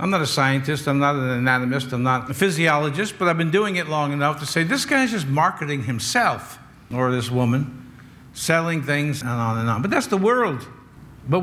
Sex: male